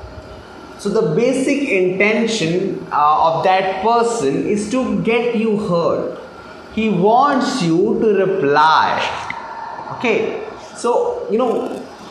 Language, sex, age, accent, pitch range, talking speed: English, male, 20-39, Indian, 170-235 Hz, 110 wpm